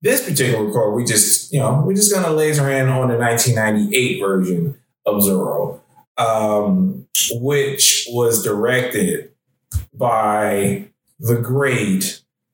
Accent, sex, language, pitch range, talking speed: American, male, English, 110-140 Hz, 125 wpm